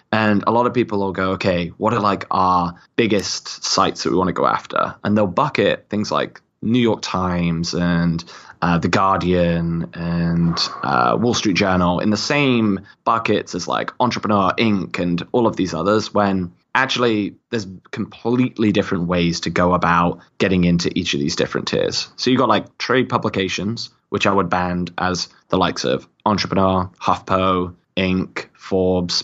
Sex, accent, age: male, British, 20-39